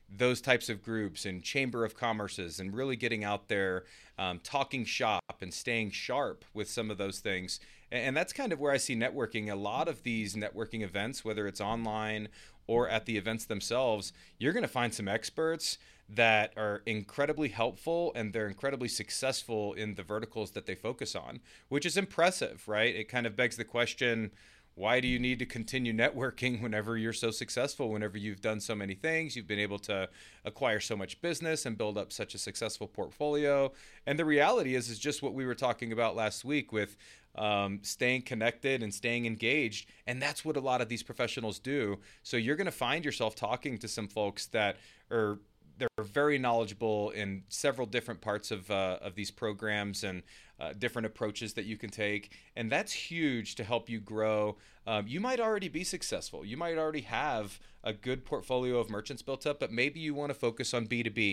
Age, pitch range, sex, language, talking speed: 30-49, 105-125 Hz, male, English, 200 wpm